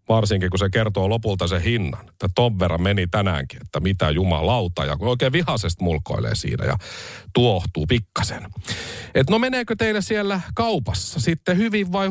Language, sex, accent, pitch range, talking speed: Finnish, male, native, 95-140 Hz, 160 wpm